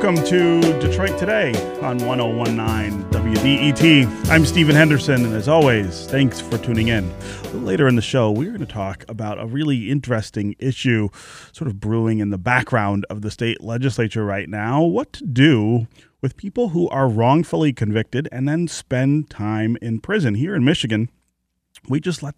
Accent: American